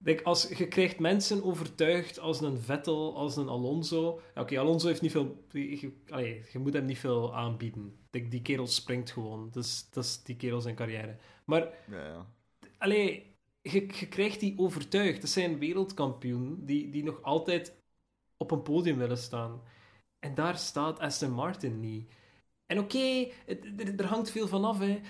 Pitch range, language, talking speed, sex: 130-180 Hz, Dutch, 155 wpm, male